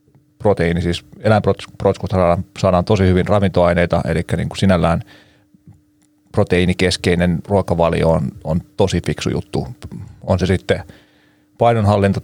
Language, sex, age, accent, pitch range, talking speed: Finnish, male, 30-49, native, 90-105 Hz, 100 wpm